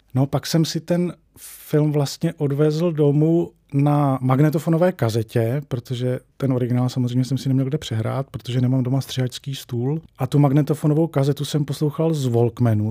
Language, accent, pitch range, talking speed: Czech, native, 115-135 Hz, 160 wpm